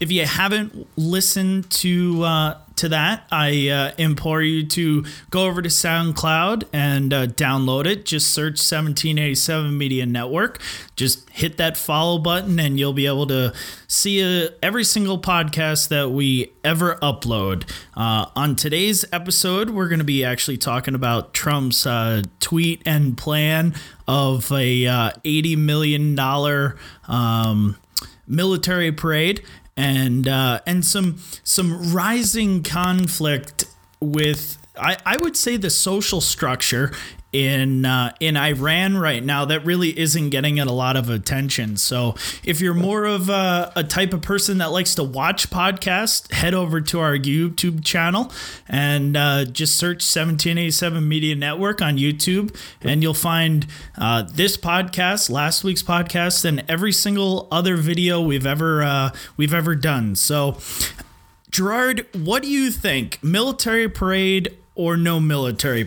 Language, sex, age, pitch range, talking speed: English, male, 30-49, 140-180 Hz, 145 wpm